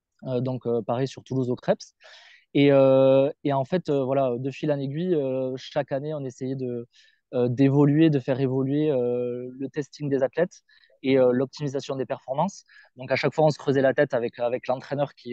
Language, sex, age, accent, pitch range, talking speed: French, male, 20-39, French, 125-150 Hz, 190 wpm